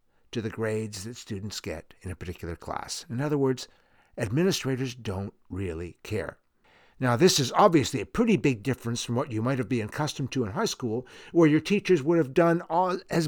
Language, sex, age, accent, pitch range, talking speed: English, male, 60-79, American, 115-165 Hz, 195 wpm